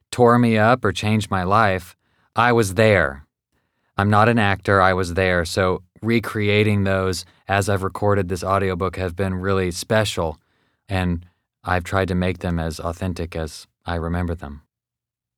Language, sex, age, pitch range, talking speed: English, male, 20-39, 90-110 Hz, 160 wpm